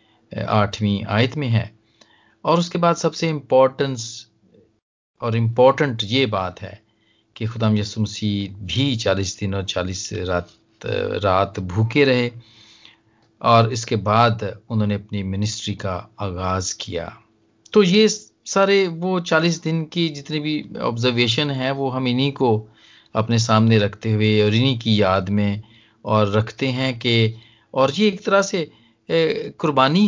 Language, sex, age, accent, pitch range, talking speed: Hindi, male, 40-59, native, 110-145 Hz, 140 wpm